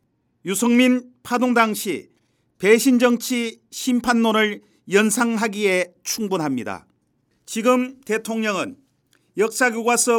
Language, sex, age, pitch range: Korean, male, 40-59, 205-245 Hz